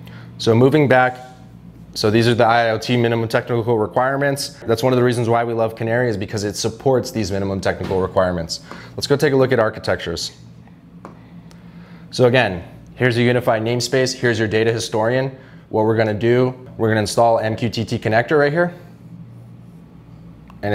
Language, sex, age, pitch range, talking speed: English, male, 20-39, 105-125 Hz, 170 wpm